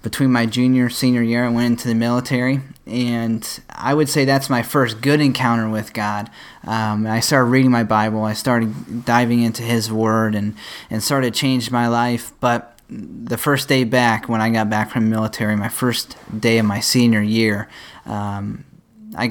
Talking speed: 195 wpm